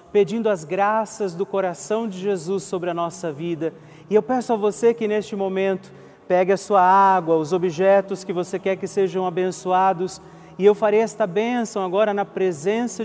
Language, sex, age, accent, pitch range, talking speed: Portuguese, male, 40-59, Brazilian, 175-200 Hz, 180 wpm